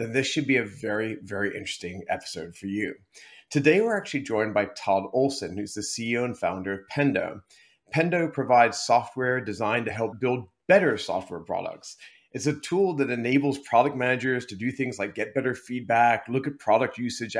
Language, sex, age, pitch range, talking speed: English, male, 30-49, 110-135 Hz, 185 wpm